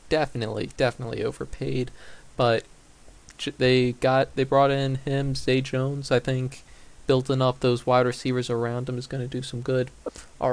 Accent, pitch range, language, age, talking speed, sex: American, 120-140 Hz, English, 20-39, 160 wpm, male